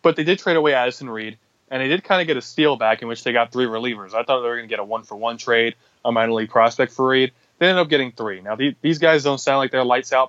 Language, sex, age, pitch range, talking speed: English, male, 20-39, 115-140 Hz, 295 wpm